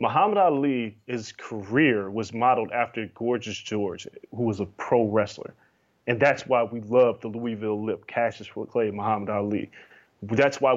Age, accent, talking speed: 20-39, American, 155 wpm